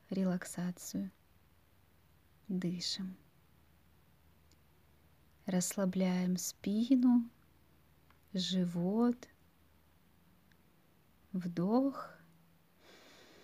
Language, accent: Russian, native